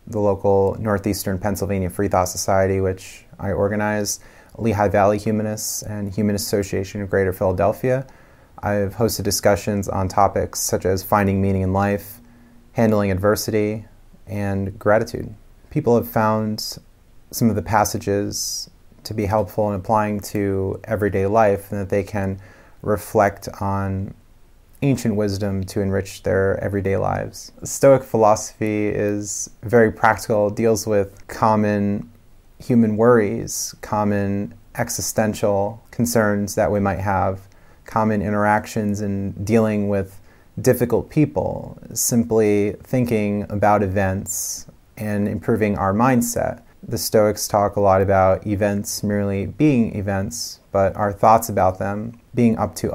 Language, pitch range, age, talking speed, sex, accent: English, 100-110 Hz, 30-49, 125 wpm, male, American